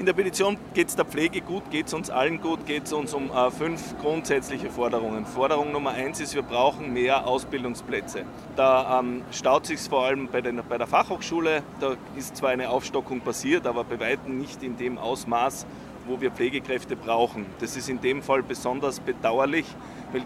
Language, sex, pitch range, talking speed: German, male, 130-155 Hz, 195 wpm